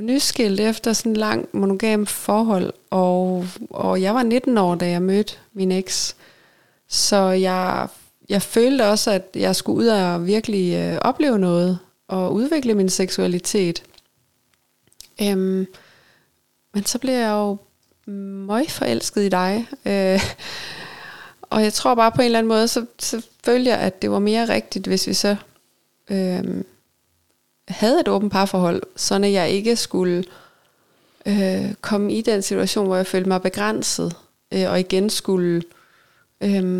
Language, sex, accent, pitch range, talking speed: Danish, female, native, 185-215 Hz, 150 wpm